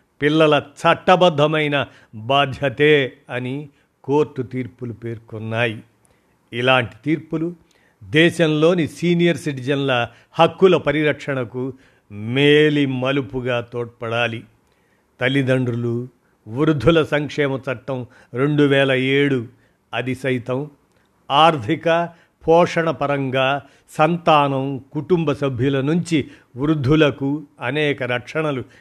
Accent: native